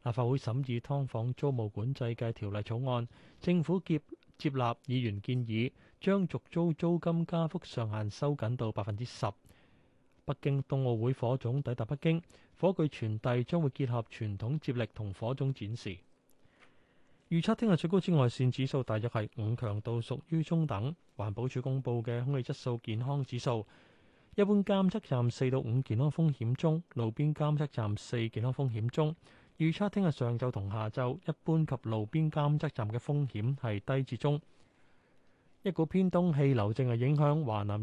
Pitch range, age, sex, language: 115-150 Hz, 20-39, male, Chinese